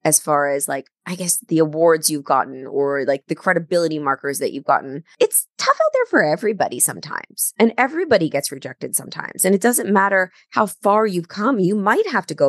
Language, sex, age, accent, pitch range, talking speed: English, female, 20-39, American, 140-200 Hz, 205 wpm